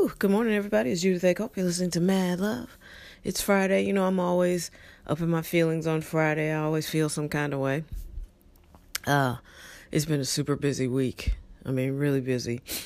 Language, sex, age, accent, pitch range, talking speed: English, female, 30-49, American, 130-180 Hz, 190 wpm